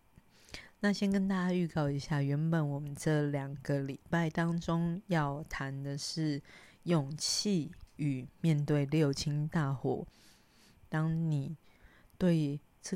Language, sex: Chinese, female